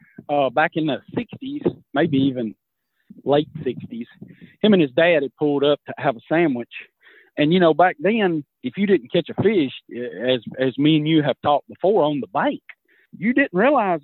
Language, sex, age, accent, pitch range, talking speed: English, male, 40-59, American, 145-185 Hz, 190 wpm